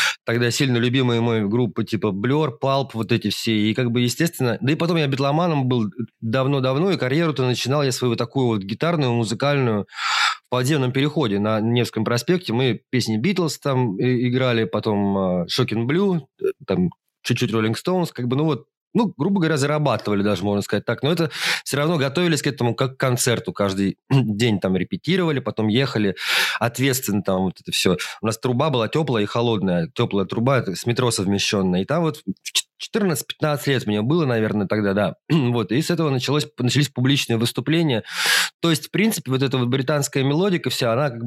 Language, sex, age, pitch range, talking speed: Russian, male, 30-49, 115-150 Hz, 185 wpm